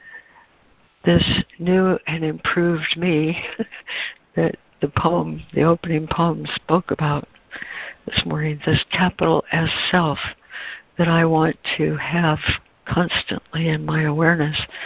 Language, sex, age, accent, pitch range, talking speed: English, female, 60-79, American, 150-180 Hz, 115 wpm